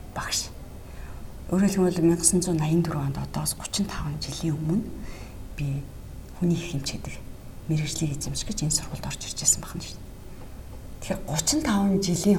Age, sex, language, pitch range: 50-69, female, English, 140-200 Hz